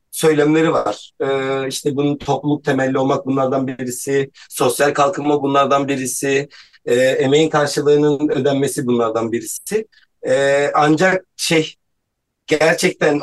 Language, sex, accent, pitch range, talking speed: Turkish, male, native, 140-160 Hz, 110 wpm